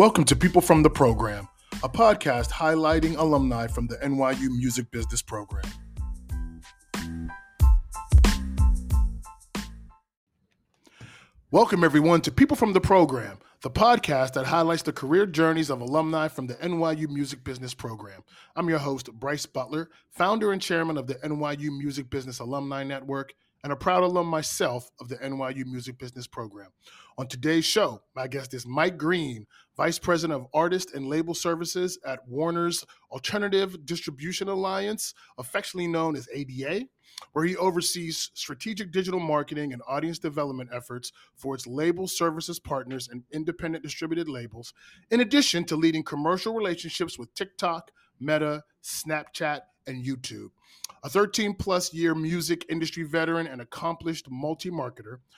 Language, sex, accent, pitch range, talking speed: English, male, American, 130-170 Hz, 140 wpm